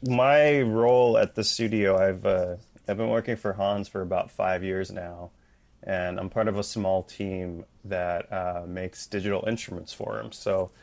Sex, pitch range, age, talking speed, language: male, 90-105 Hz, 20-39, 175 wpm, English